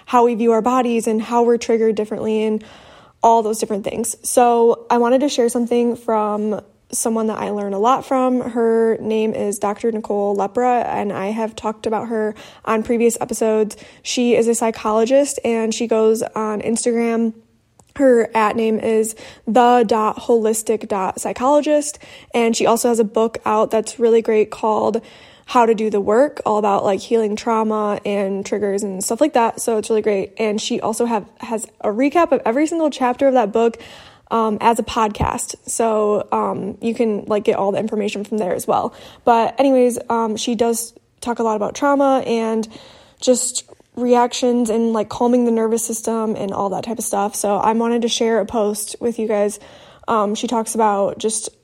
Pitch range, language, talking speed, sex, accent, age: 215-240 Hz, English, 185 wpm, female, American, 20-39